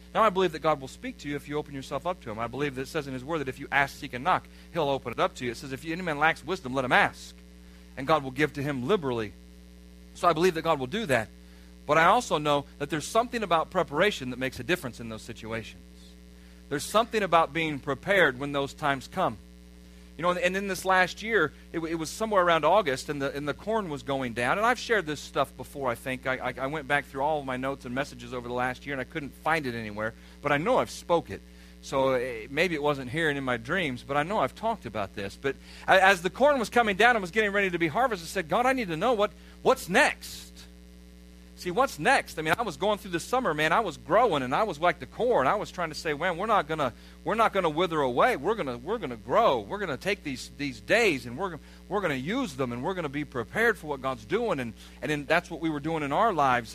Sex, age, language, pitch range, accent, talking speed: male, 40-59, English, 120-180 Hz, American, 275 wpm